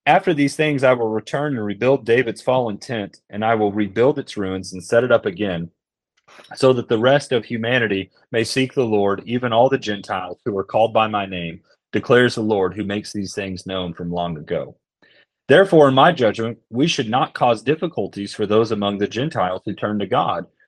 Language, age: English, 30-49